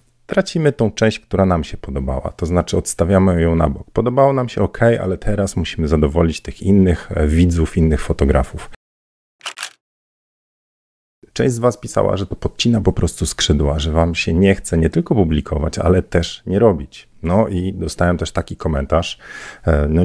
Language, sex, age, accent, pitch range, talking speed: Polish, male, 40-59, native, 80-105 Hz, 165 wpm